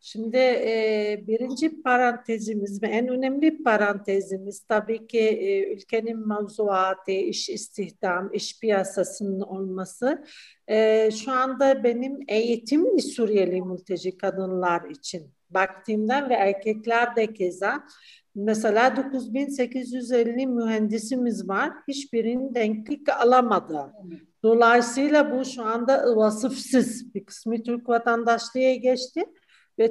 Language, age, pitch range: Turkish, 50-69, 205-265 Hz